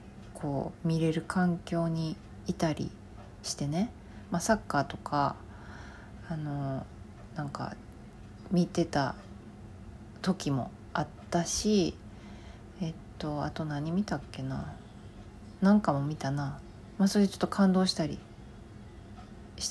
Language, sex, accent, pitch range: Japanese, female, native, 110-175 Hz